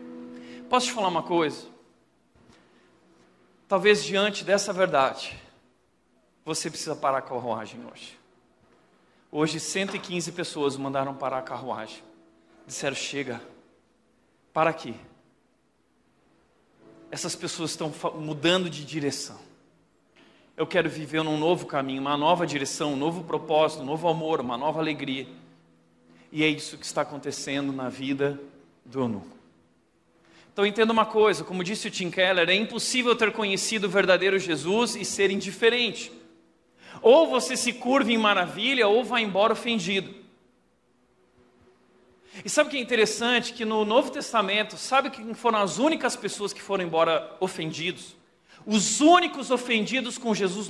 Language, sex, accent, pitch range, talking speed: Portuguese, male, Brazilian, 150-215 Hz, 135 wpm